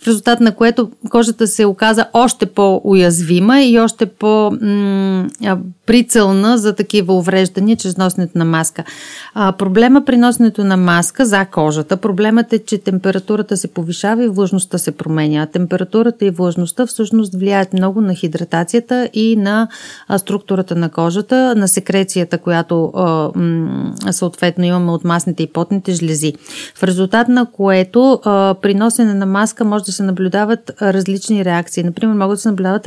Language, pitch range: Bulgarian, 185-215 Hz